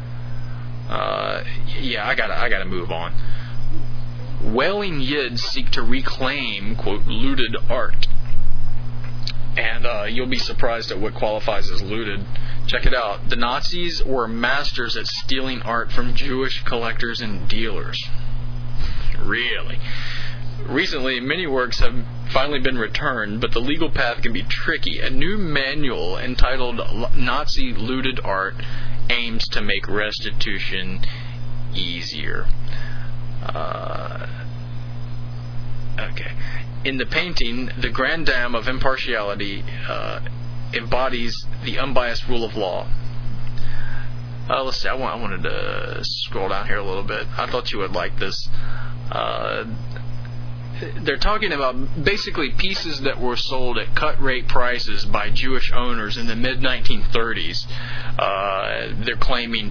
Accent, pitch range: American, 120-125 Hz